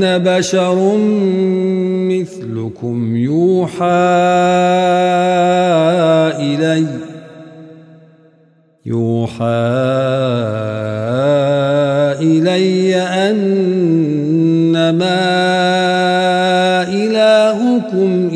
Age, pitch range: 50-69, 125-180 Hz